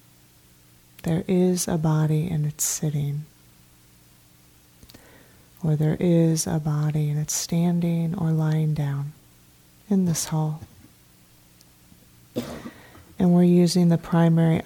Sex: female